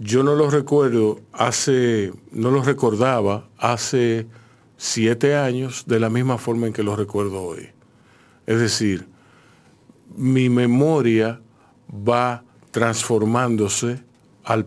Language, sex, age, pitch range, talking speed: Spanish, male, 50-69, 115-140 Hz, 110 wpm